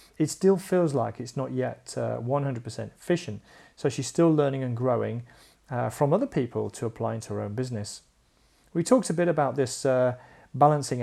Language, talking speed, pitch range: English, 185 wpm, 110-145 Hz